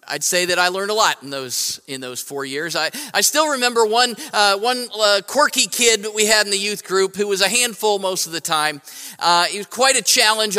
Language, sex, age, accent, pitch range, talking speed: English, male, 40-59, American, 185-235 Hz, 250 wpm